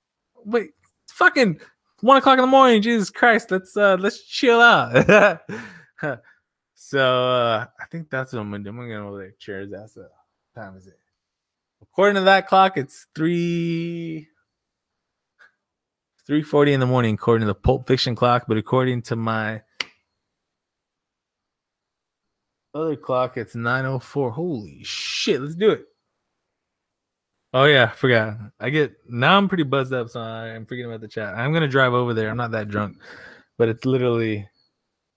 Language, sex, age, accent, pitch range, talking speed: English, male, 20-39, American, 115-175 Hz, 160 wpm